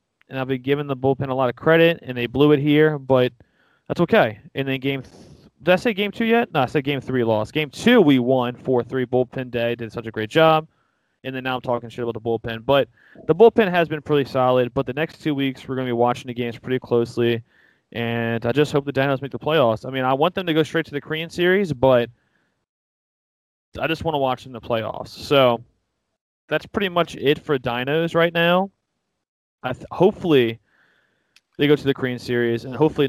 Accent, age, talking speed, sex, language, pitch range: American, 20-39, 230 wpm, male, English, 120-155 Hz